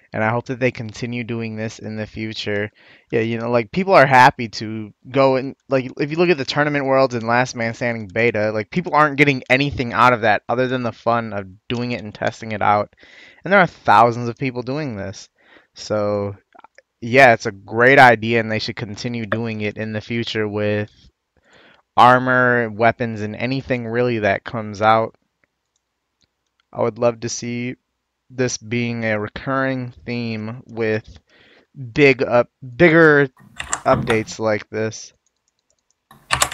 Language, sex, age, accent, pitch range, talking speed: English, male, 20-39, American, 110-130 Hz, 170 wpm